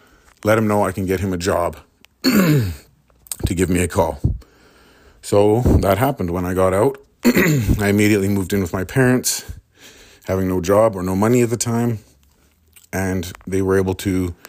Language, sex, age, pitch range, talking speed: English, male, 30-49, 85-105 Hz, 175 wpm